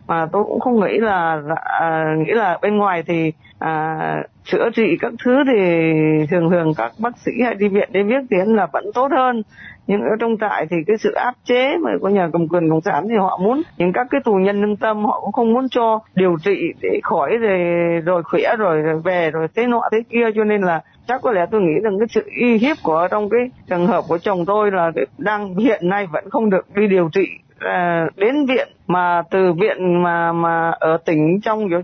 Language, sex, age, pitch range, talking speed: Vietnamese, female, 20-39, 175-225 Hz, 230 wpm